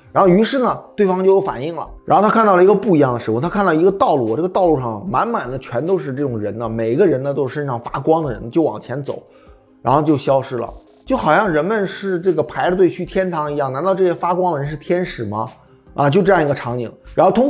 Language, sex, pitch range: Chinese, male, 130-180 Hz